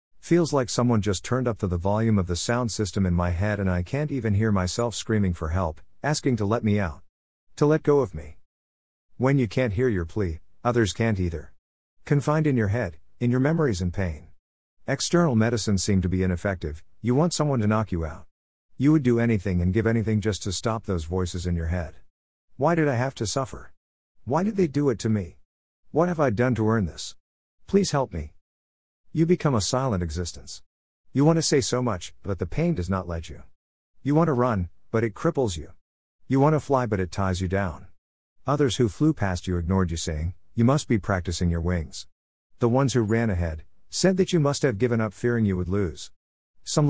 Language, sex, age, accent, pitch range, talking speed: English, male, 50-69, American, 85-125 Hz, 220 wpm